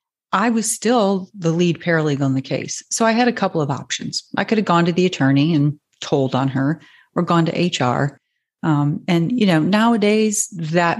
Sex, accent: female, American